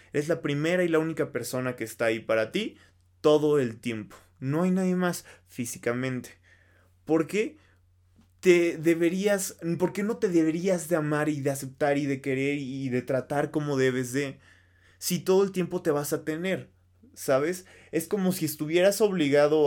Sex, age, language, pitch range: male, 20-39, Spanish, 125-165 Hz